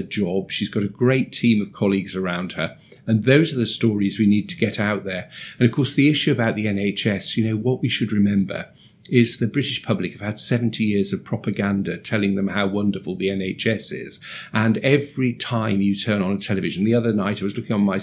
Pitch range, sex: 100-115 Hz, male